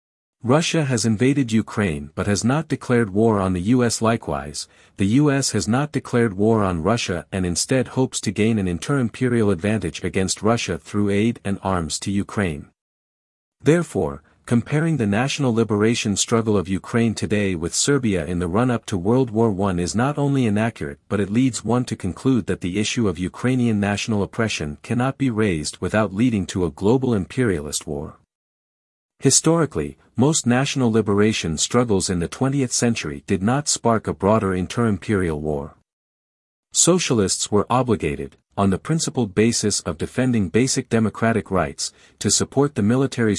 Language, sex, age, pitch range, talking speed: English, male, 50-69, 95-125 Hz, 160 wpm